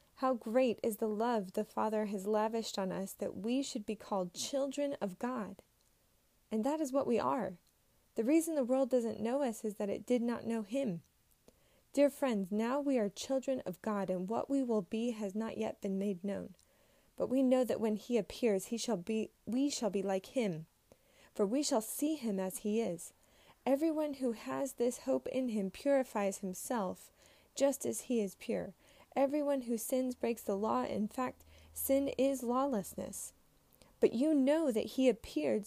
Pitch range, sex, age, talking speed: 210-265 Hz, female, 20-39, 190 wpm